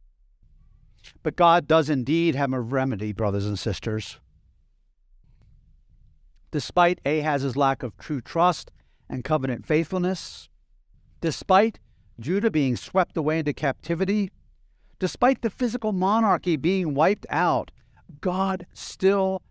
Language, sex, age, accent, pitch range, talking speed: English, male, 50-69, American, 130-185 Hz, 110 wpm